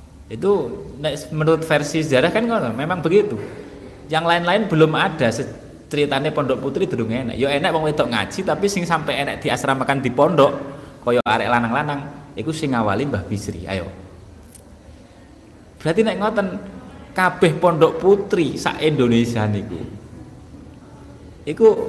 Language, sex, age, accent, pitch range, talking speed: Indonesian, male, 30-49, native, 105-160 Hz, 130 wpm